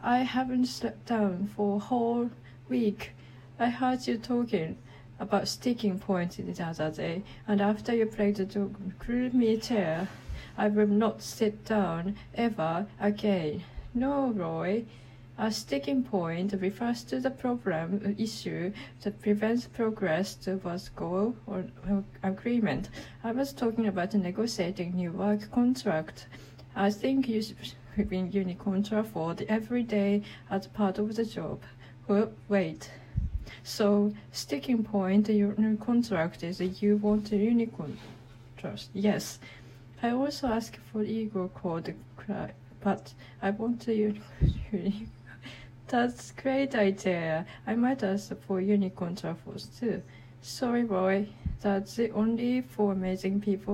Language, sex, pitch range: Japanese, female, 175-220 Hz